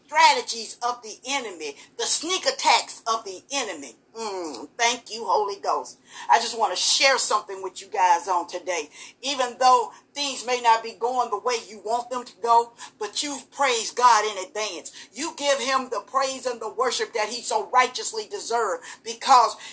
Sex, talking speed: female, 180 wpm